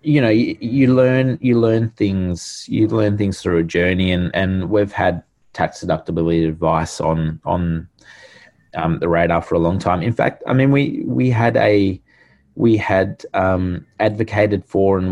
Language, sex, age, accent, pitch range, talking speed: English, male, 20-39, Australian, 85-100 Hz, 175 wpm